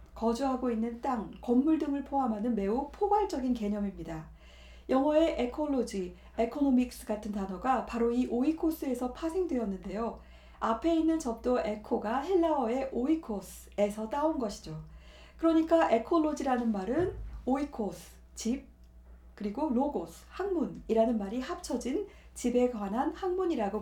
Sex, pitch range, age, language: female, 215-300 Hz, 40-59, Korean